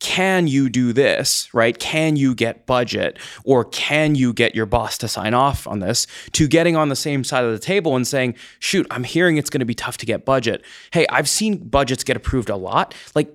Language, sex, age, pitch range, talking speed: English, male, 20-39, 120-175 Hz, 225 wpm